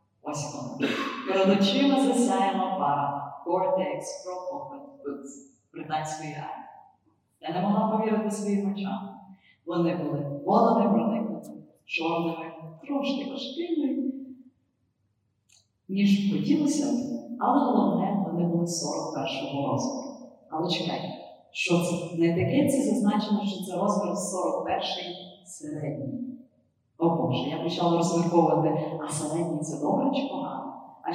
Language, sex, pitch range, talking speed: Ukrainian, female, 165-250 Hz, 110 wpm